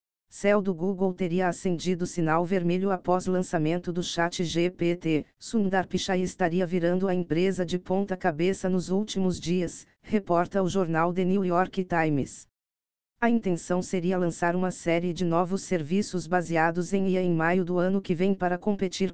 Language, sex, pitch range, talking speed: Portuguese, female, 170-190 Hz, 155 wpm